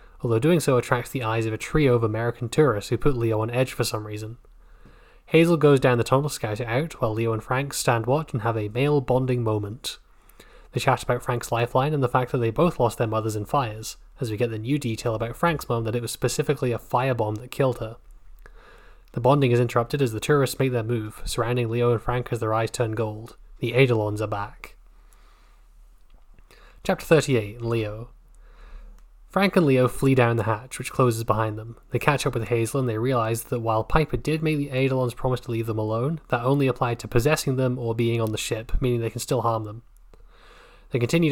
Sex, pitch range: male, 115-135 Hz